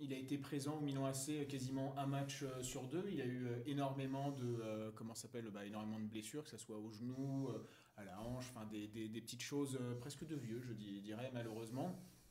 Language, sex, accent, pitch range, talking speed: French, male, French, 115-140 Hz, 210 wpm